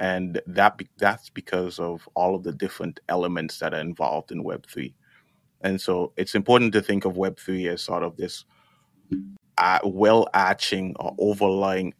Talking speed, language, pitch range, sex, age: 155 wpm, English, 90-95 Hz, male, 20-39